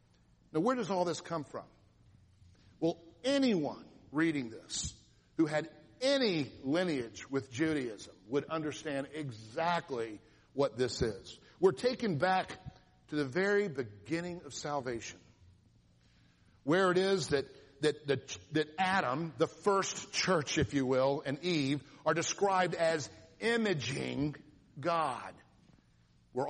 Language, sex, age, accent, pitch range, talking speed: English, male, 50-69, American, 135-185 Hz, 120 wpm